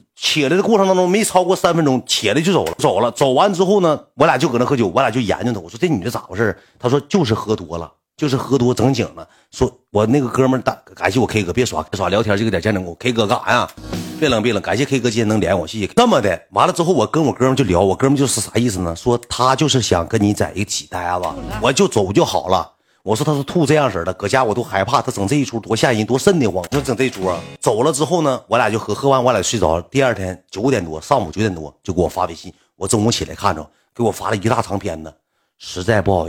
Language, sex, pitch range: Chinese, male, 95-135 Hz